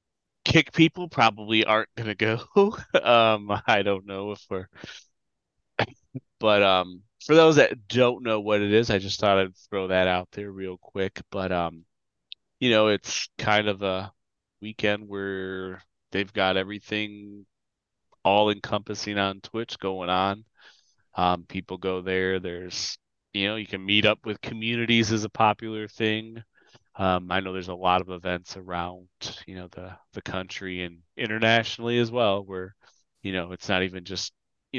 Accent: American